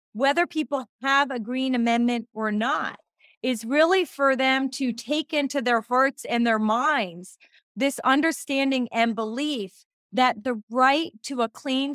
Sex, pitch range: female, 230-305 Hz